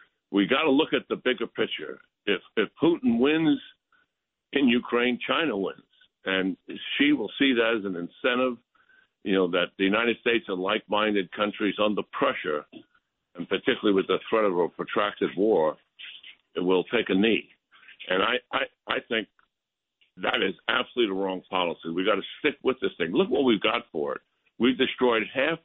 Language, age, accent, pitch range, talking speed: English, 60-79, American, 105-150 Hz, 180 wpm